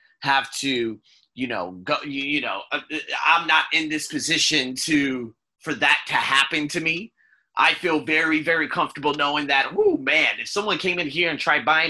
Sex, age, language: male, 30-49, English